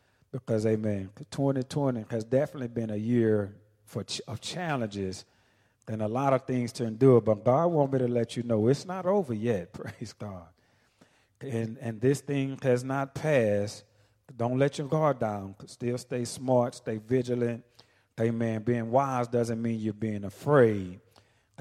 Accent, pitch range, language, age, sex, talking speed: American, 110-130 Hz, English, 40-59, male, 160 wpm